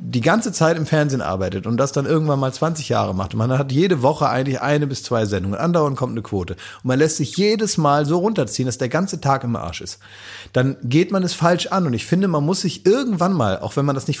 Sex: male